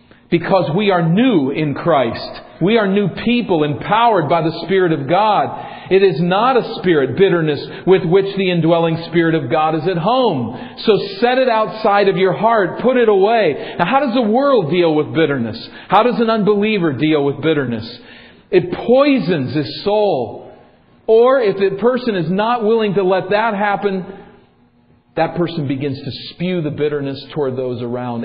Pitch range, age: 145-205 Hz, 50-69